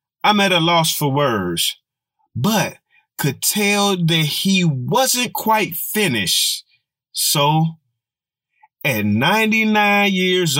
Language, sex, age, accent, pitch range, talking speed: English, male, 30-49, American, 145-205 Hz, 100 wpm